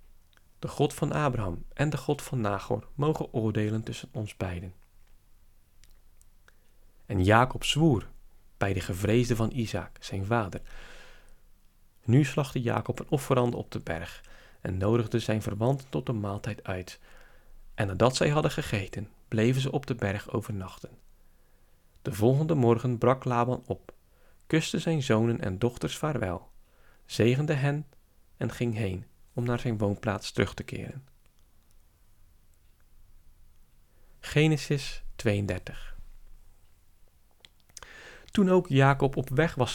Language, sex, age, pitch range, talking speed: Dutch, male, 40-59, 100-130 Hz, 125 wpm